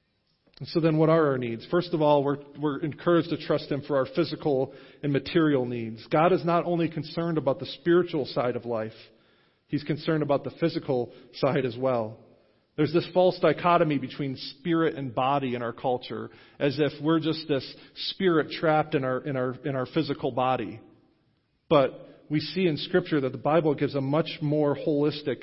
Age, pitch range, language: 40-59, 130-160 Hz, English